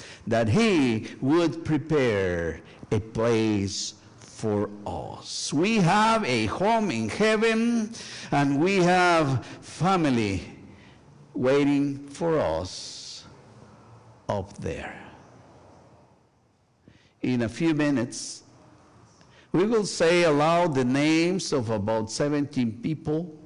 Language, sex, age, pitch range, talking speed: English, male, 50-69, 115-170 Hz, 95 wpm